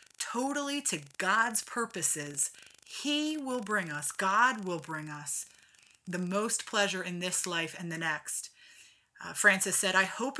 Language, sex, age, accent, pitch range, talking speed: English, female, 30-49, American, 170-225 Hz, 150 wpm